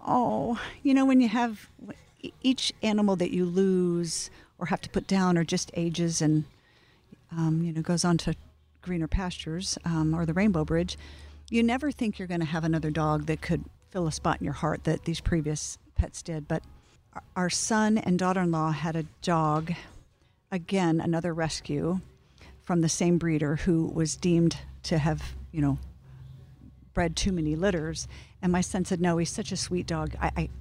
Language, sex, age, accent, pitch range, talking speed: English, female, 50-69, American, 155-185 Hz, 180 wpm